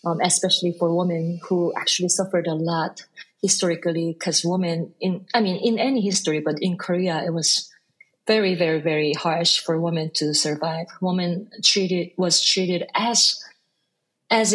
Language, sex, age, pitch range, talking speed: English, female, 30-49, 170-195 Hz, 155 wpm